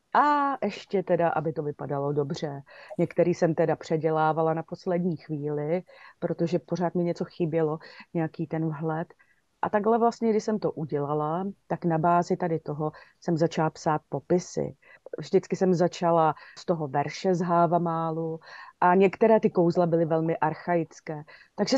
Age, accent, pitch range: 30-49, native, 160-185 Hz